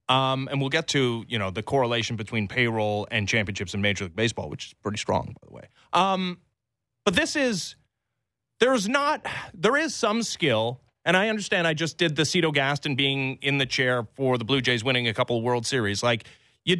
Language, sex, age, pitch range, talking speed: English, male, 30-49, 140-220 Hz, 205 wpm